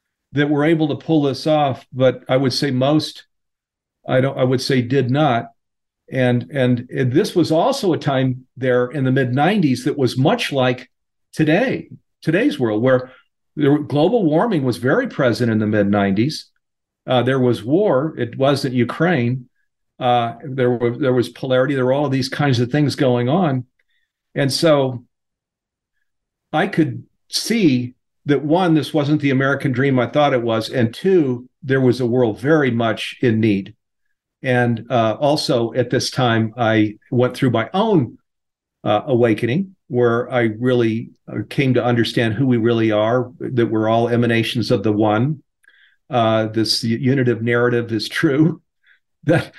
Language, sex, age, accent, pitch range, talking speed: English, male, 50-69, American, 120-145 Hz, 165 wpm